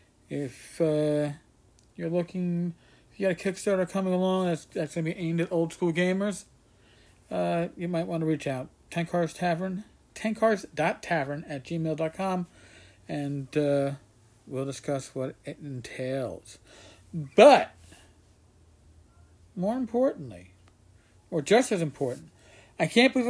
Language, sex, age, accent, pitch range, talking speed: English, male, 50-69, American, 135-195 Hz, 130 wpm